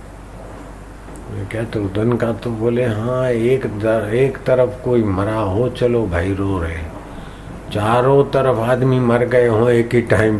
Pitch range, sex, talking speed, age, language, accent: 100-120 Hz, male, 155 wpm, 50-69, Hindi, native